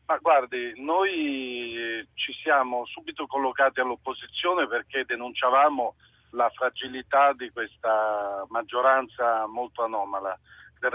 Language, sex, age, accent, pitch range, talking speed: Italian, male, 50-69, native, 110-140 Hz, 100 wpm